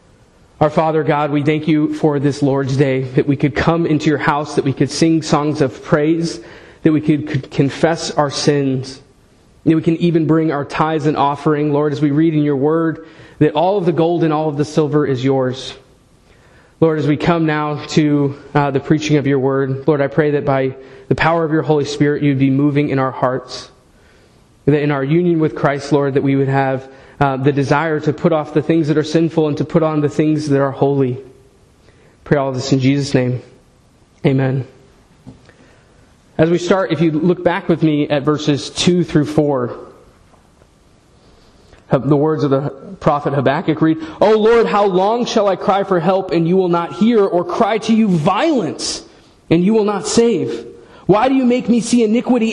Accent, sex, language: American, male, English